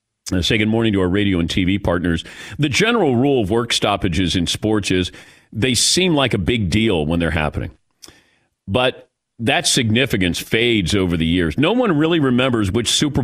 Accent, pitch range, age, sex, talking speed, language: American, 100-140 Hz, 40-59, male, 180 wpm, English